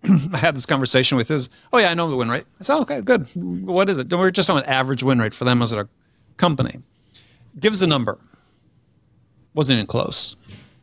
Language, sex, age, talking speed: English, male, 50-69, 215 wpm